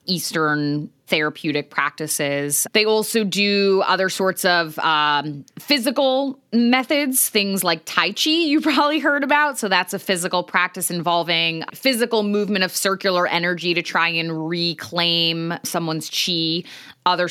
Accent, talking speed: American, 130 wpm